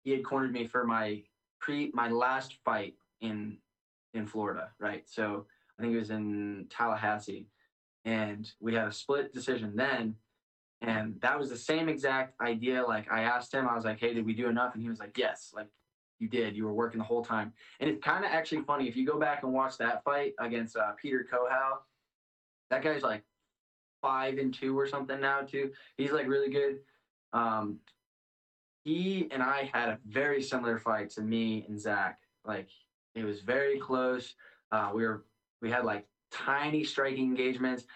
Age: 10-29